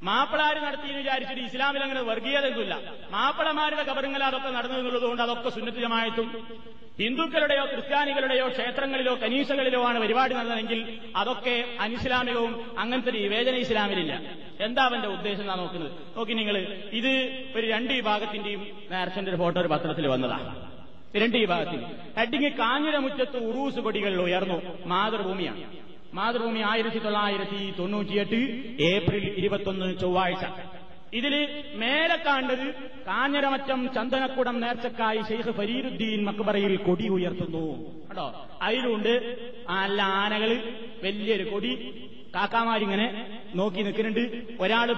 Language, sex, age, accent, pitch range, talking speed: Malayalam, male, 30-49, native, 200-250 Hz, 100 wpm